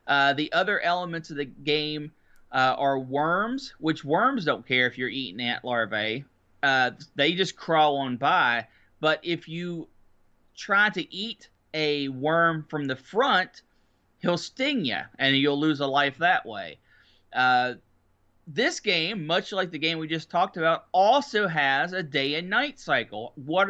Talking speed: 165 wpm